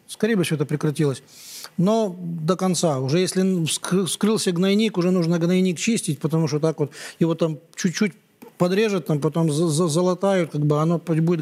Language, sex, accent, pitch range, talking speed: Russian, male, native, 160-195 Hz, 165 wpm